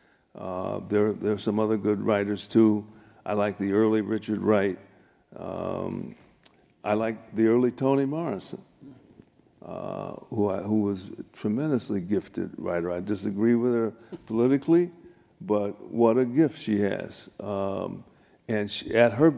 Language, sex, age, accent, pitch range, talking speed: English, male, 60-79, American, 105-135 Hz, 145 wpm